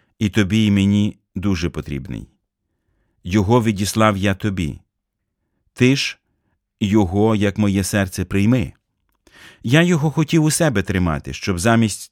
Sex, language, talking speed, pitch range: male, Ukrainian, 125 wpm, 95-115 Hz